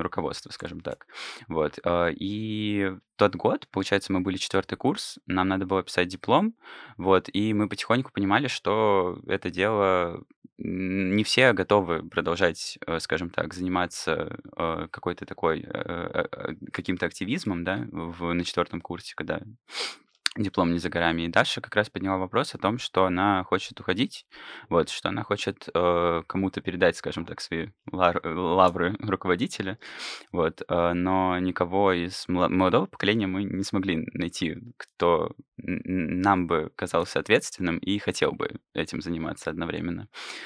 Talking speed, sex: 130 wpm, male